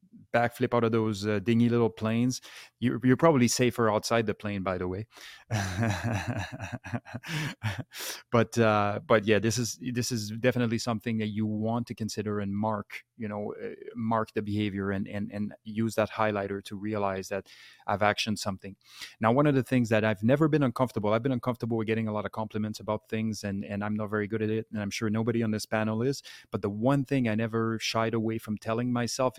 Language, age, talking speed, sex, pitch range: English, 30-49, 205 wpm, male, 105-120 Hz